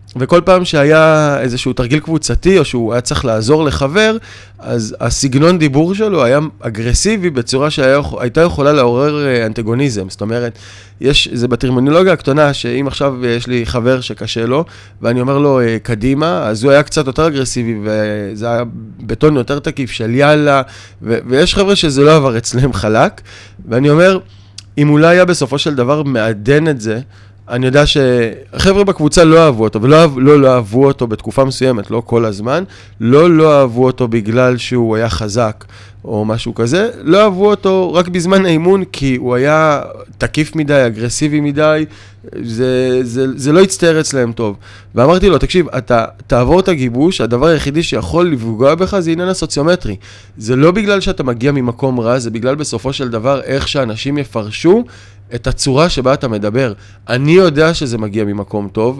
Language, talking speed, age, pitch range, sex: Hebrew, 160 wpm, 20-39, 115-155 Hz, male